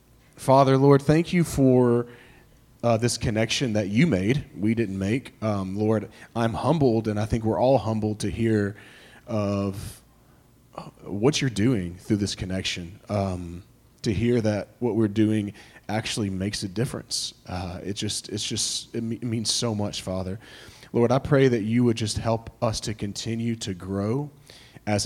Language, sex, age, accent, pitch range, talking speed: English, male, 30-49, American, 105-120 Hz, 170 wpm